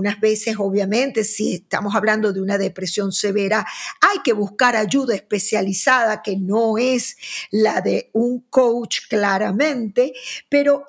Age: 50-69